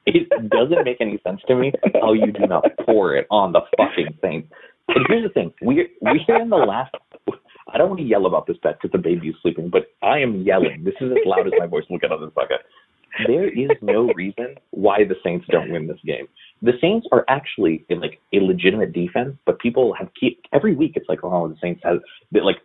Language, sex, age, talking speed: English, male, 30-49, 240 wpm